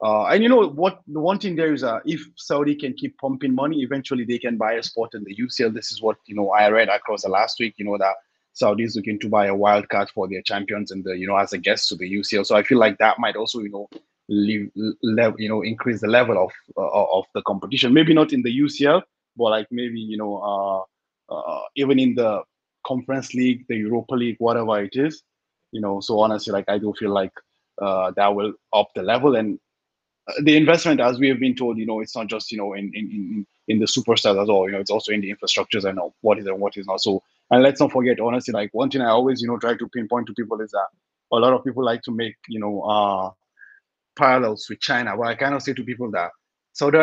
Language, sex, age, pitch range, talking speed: English, male, 20-39, 105-130 Hz, 255 wpm